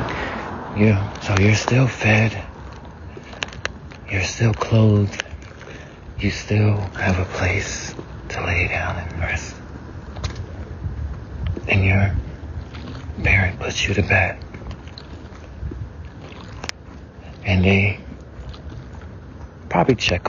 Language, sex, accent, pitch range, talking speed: English, male, American, 85-105 Hz, 85 wpm